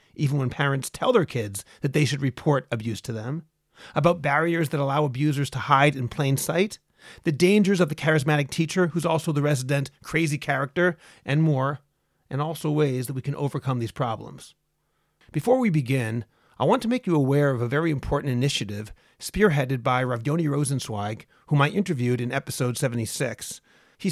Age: 40-59